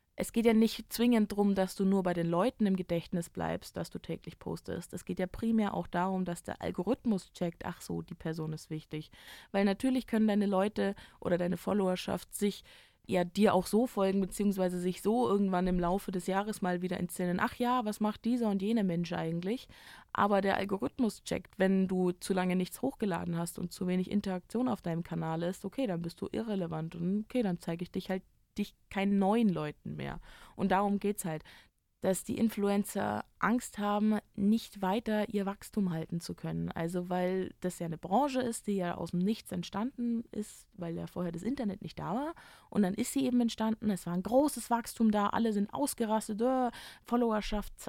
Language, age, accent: German, 20-39, German